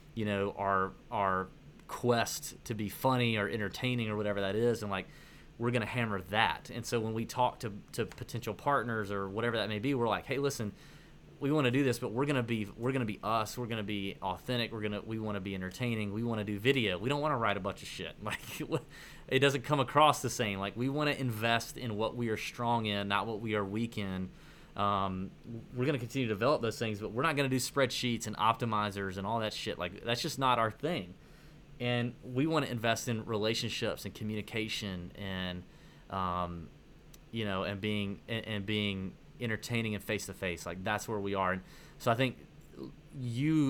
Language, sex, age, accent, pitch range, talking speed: English, male, 30-49, American, 100-125 Hz, 225 wpm